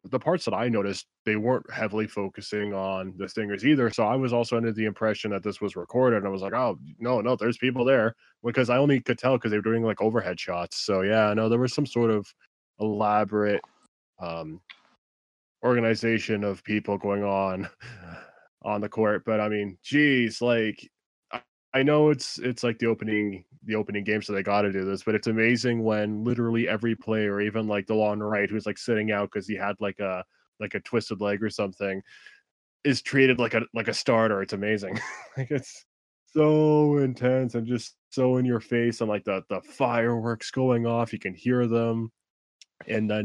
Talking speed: 200 wpm